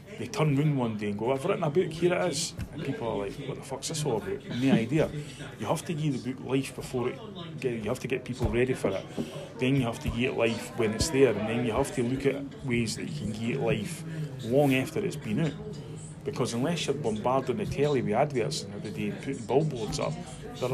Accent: British